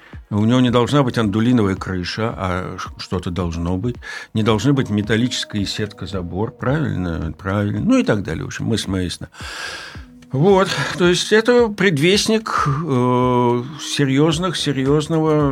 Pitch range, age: 105-155 Hz, 60-79